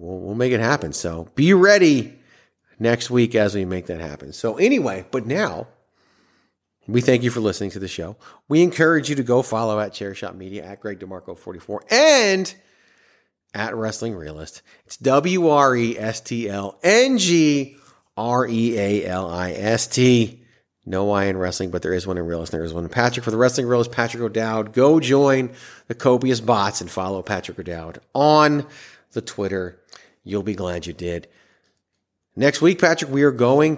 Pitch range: 95-130 Hz